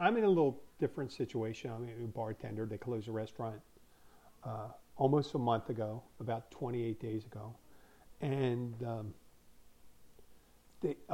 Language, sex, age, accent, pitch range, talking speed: English, male, 50-69, American, 110-135 Hz, 140 wpm